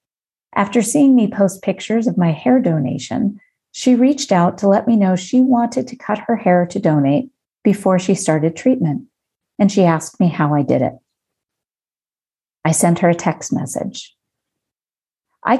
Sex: female